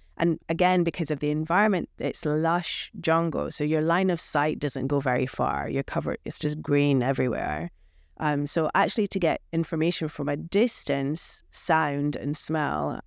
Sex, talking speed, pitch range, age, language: female, 165 wpm, 140-165 Hz, 30-49, English